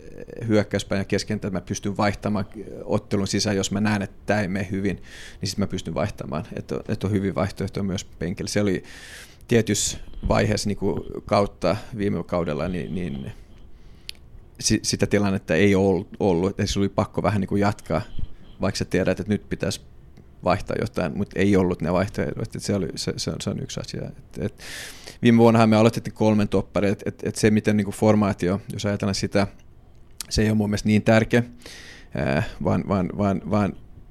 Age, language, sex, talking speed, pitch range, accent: 30-49, Finnish, male, 175 wpm, 95-110 Hz, native